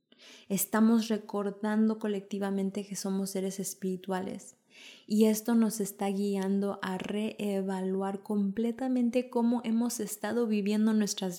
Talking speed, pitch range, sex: 105 wpm, 195-220 Hz, female